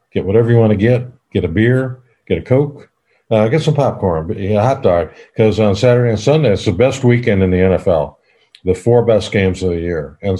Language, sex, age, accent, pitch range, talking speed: English, male, 50-69, American, 85-110 Hz, 225 wpm